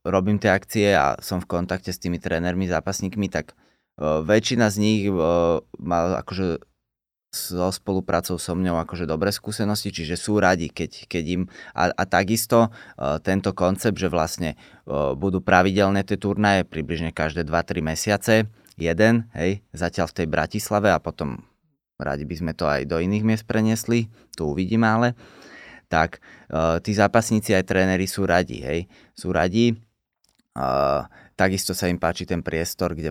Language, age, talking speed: Slovak, 20-39, 150 wpm